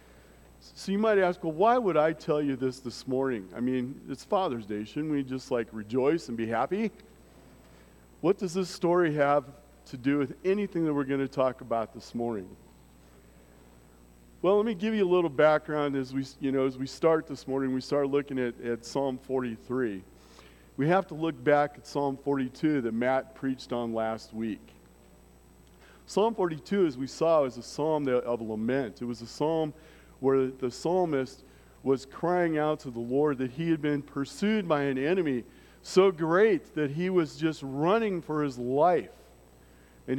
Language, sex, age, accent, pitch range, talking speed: English, male, 40-59, American, 120-160 Hz, 185 wpm